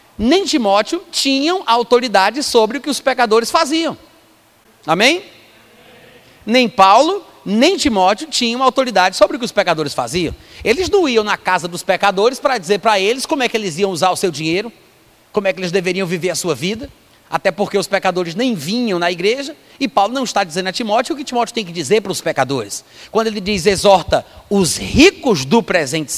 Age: 30-49